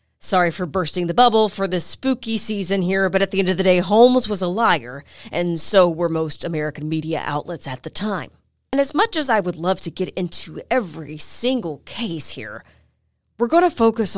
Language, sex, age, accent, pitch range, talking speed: English, female, 30-49, American, 160-210 Hz, 205 wpm